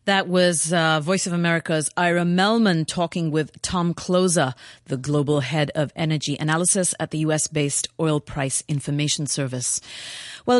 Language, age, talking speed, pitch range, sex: English, 30-49, 145 wpm, 150-190 Hz, female